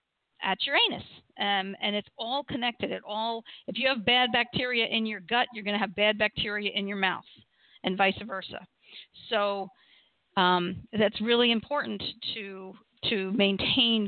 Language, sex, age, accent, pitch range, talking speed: English, female, 50-69, American, 200-240 Hz, 160 wpm